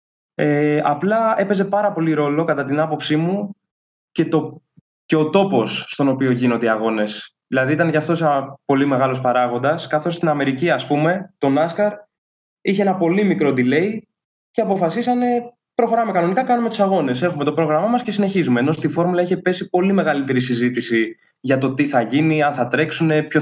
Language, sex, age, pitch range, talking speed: Greek, male, 20-39, 140-200 Hz, 180 wpm